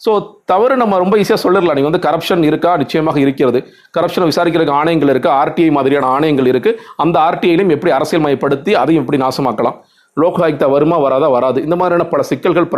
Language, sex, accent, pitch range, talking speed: Tamil, male, native, 140-185 Hz, 170 wpm